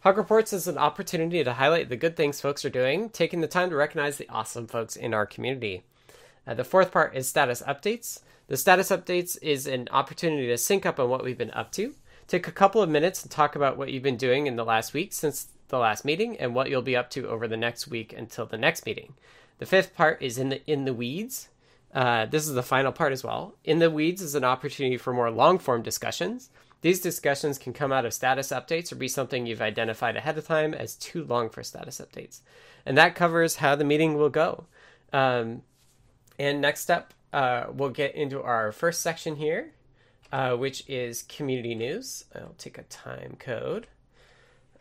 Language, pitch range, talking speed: English, 125-165 Hz, 215 wpm